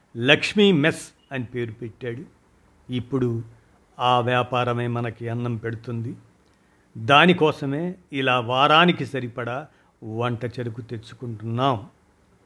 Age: 50-69